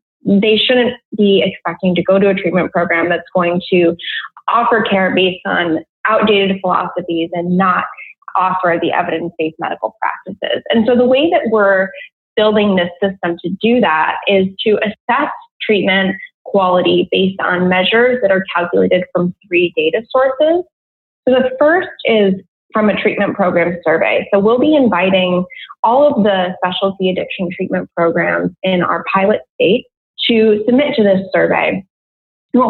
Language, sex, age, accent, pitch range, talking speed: English, female, 20-39, American, 180-240 Hz, 150 wpm